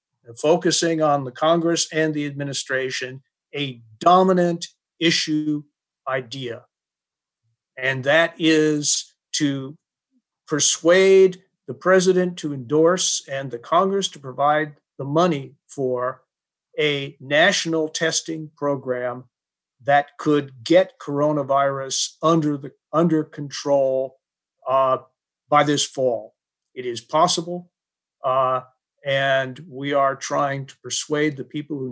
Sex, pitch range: male, 135-170 Hz